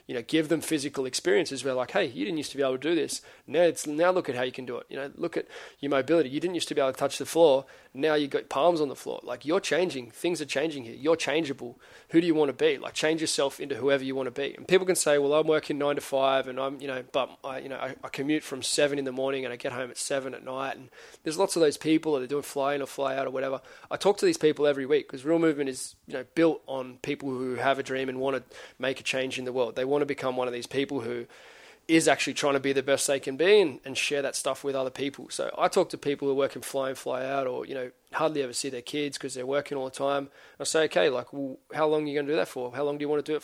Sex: male